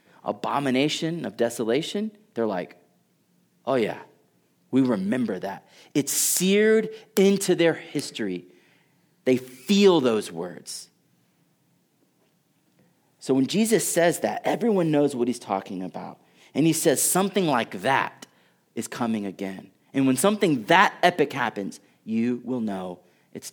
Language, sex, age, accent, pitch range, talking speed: English, male, 30-49, American, 110-170 Hz, 125 wpm